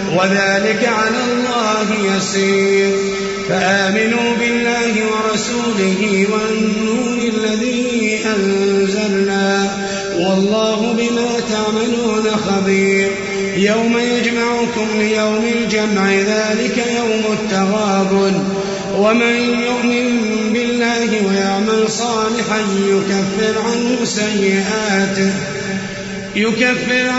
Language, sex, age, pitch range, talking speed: Arabic, male, 30-49, 195-235 Hz, 65 wpm